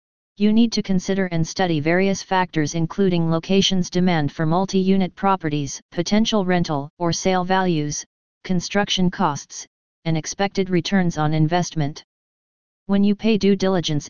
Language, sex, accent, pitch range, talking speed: English, female, American, 165-190 Hz, 130 wpm